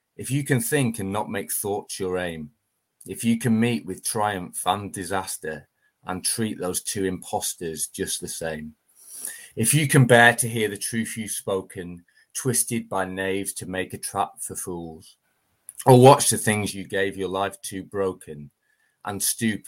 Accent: British